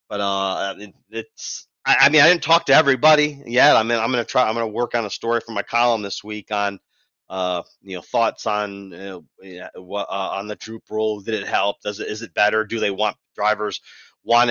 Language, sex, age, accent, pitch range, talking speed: English, male, 30-49, American, 100-115 Hz, 220 wpm